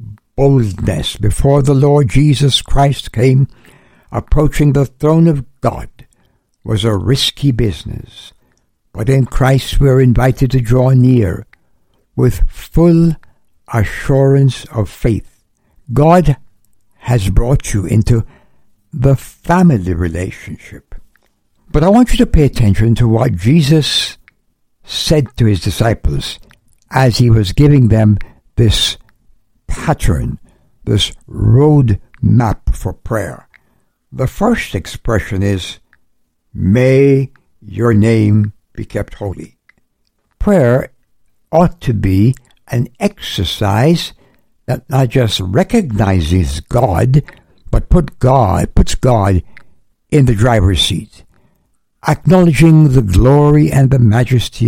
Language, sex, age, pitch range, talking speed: English, male, 60-79, 105-140 Hz, 110 wpm